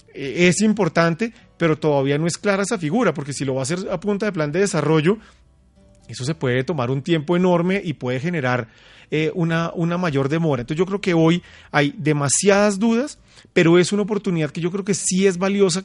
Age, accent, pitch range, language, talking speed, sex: 30-49, Colombian, 145-190 Hz, Spanish, 210 wpm, male